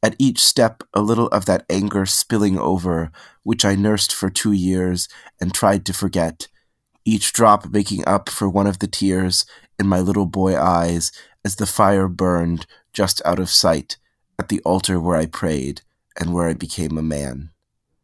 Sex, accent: male, American